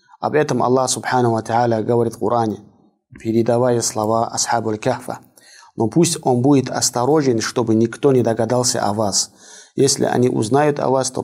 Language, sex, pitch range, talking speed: Russian, male, 110-130 Hz, 145 wpm